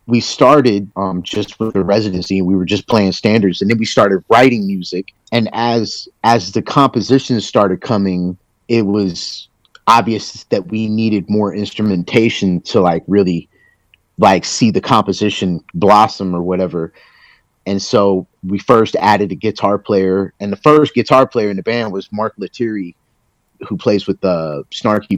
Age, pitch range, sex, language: 30-49, 95-110 Hz, male, English